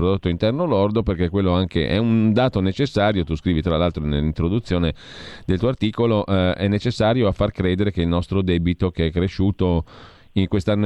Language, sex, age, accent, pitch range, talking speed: Italian, male, 40-59, native, 80-100 Hz, 180 wpm